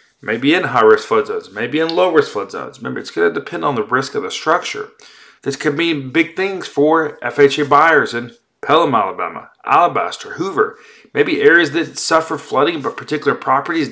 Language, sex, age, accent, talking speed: English, male, 30-49, American, 175 wpm